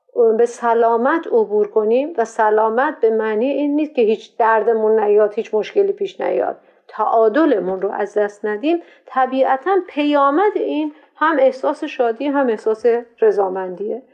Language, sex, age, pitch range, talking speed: Persian, female, 50-69, 230-300 Hz, 135 wpm